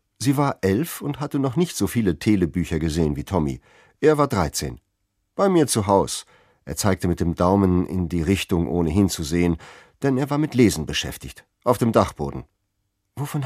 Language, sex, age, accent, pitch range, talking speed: German, male, 50-69, German, 90-140 Hz, 180 wpm